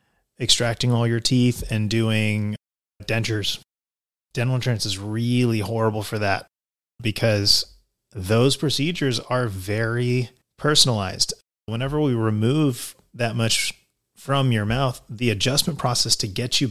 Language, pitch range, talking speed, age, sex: English, 105-130 Hz, 120 wpm, 30-49, male